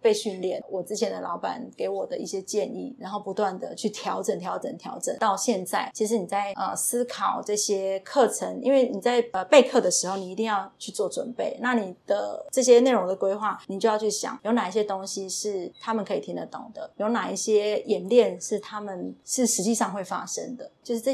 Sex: female